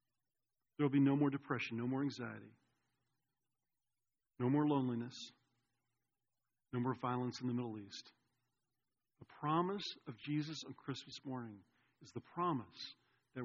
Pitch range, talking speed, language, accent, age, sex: 120-145 Hz, 135 wpm, English, American, 40-59, male